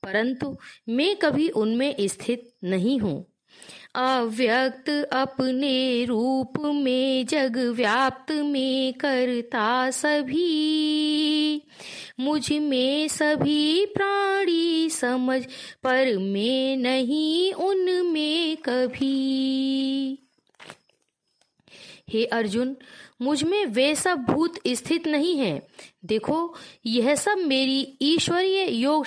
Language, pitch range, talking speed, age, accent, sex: Hindi, 250-310 Hz, 85 wpm, 20-39, native, female